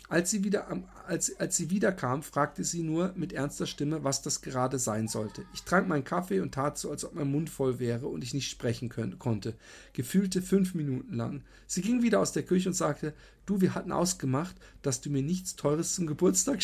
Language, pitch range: German, 115-170 Hz